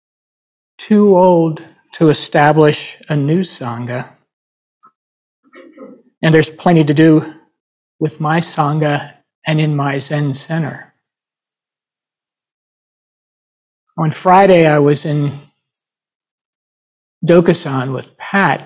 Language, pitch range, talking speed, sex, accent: English, 145-180 Hz, 90 wpm, male, American